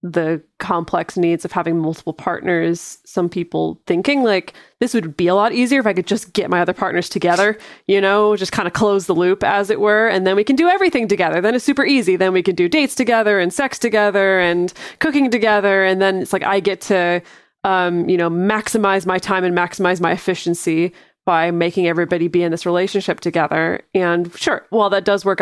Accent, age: American, 20-39